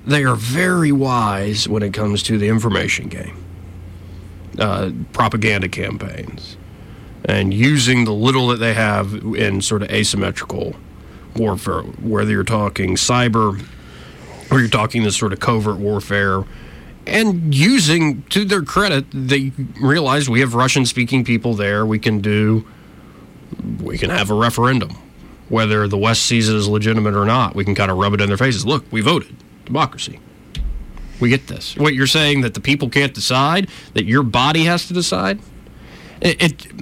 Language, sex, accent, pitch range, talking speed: English, male, American, 100-135 Hz, 160 wpm